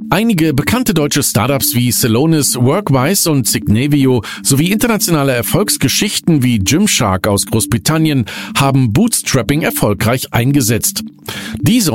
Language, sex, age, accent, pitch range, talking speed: German, male, 50-69, German, 115-170 Hz, 105 wpm